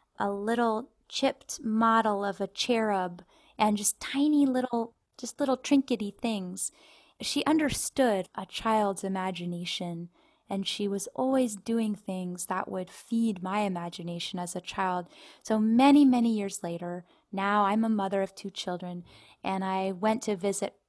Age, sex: 10-29, female